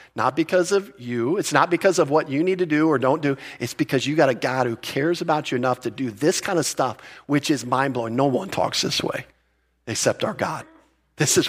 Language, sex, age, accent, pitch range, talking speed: English, male, 40-59, American, 125-160 Hz, 240 wpm